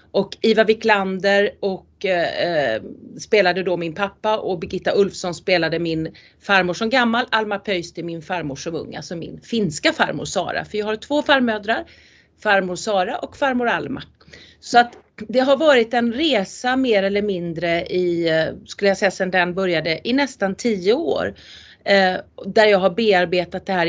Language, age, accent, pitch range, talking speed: Swedish, 40-59, native, 180-220 Hz, 155 wpm